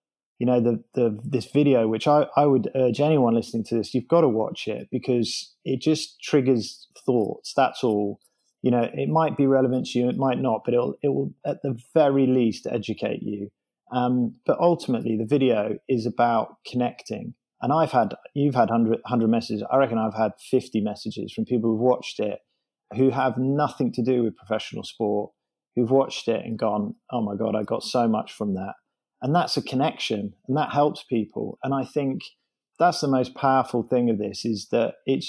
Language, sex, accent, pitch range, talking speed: English, male, British, 115-135 Hz, 200 wpm